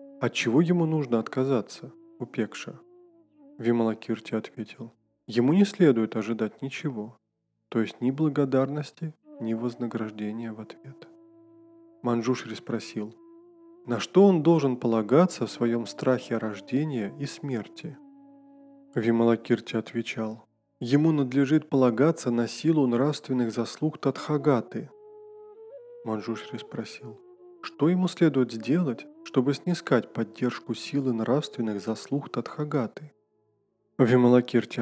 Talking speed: 100 wpm